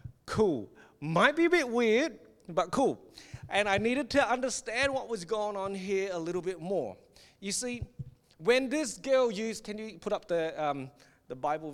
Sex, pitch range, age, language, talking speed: male, 170-230 Hz, 30-49, English, 185 wpm